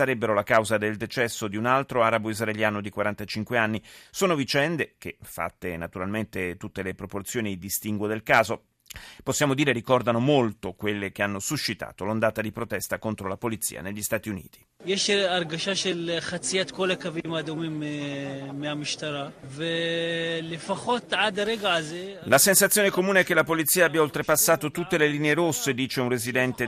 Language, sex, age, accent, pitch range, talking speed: Italian, male, 30-49, native, 105-145 Hz, 125 wpm